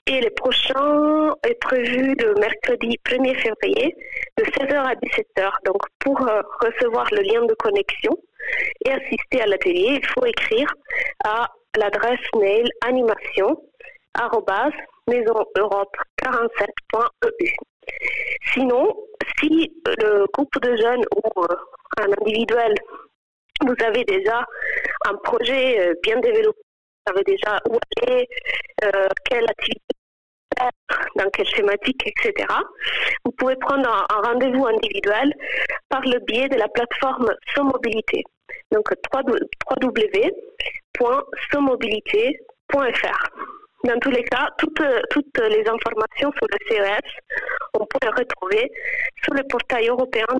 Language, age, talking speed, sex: French, 30-49, 120 wpm, female